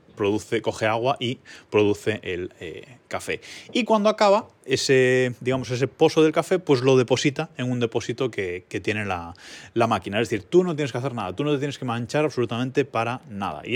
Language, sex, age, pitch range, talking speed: Spanish, male, 20-39, 105-140 Hz, 205 wpm